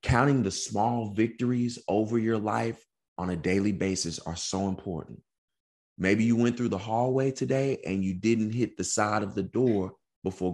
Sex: male